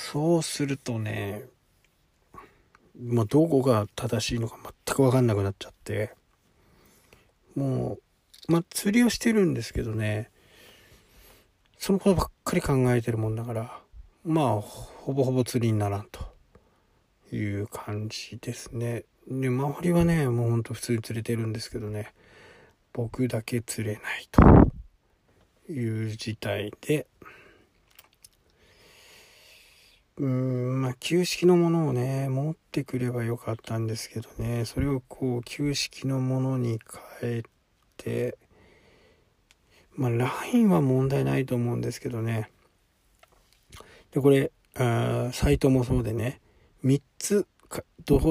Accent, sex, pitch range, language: native, male, 110-140 Hz, Japanese